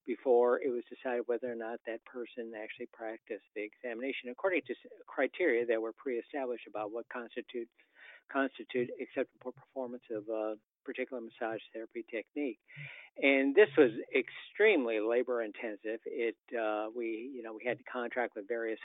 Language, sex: English, male